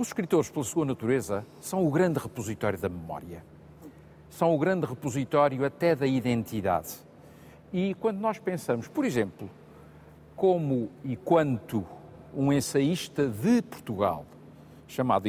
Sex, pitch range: male, 115-170 Hz